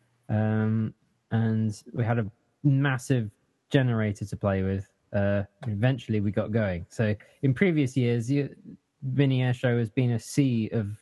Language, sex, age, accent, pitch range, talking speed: English, male, 20-39, British, 110-130 Hz, 150 wpm